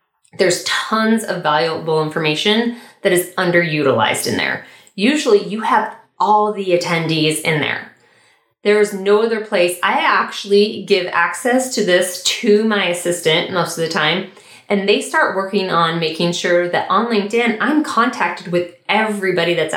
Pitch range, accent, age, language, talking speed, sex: 155-205 Hz, American, 30-49, English, 150 wpm, female